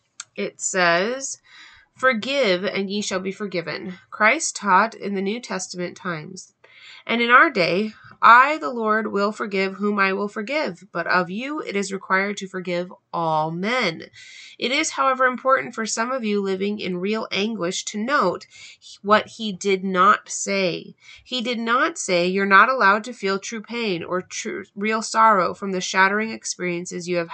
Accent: American